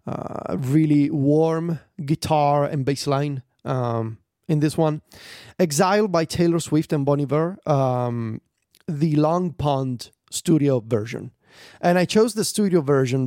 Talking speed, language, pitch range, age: 135 wpm, English, 130-165 Hz, 30-49